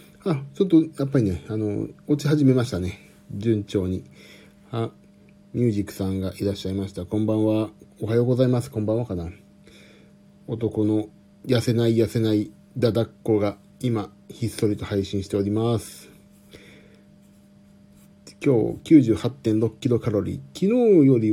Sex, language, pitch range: male, Japanese, 100-150 Hz